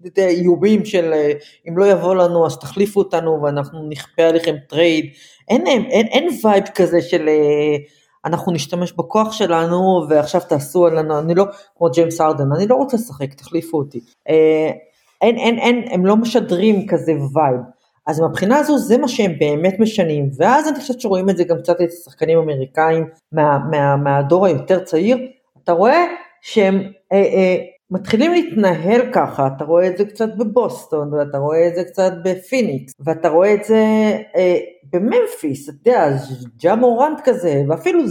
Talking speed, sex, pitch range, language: 160 wpm, female, 160-225 Hz, Hebrew